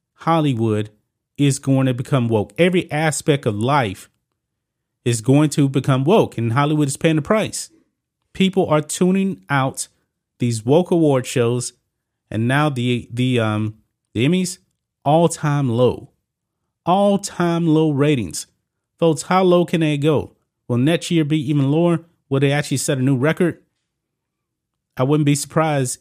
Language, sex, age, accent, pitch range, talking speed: English, male, 30-49, American, 120-160 Hz, 150 wpm